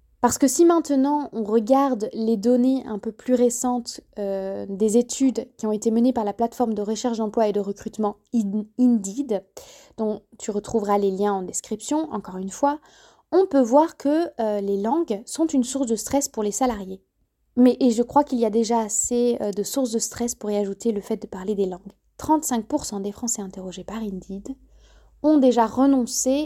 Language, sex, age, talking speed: French, female, 20-39, 195 wpm